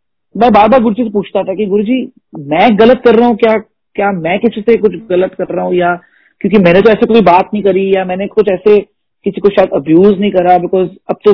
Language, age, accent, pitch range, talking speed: Hindi, 40-59, native, 190-250 Hz, 245 wpm